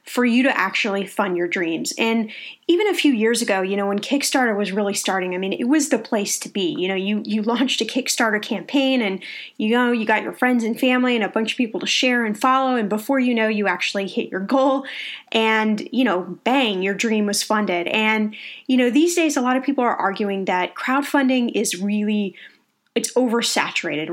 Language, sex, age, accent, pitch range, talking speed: English, female, 10-29, American, 205-265 Hz, 220 wpm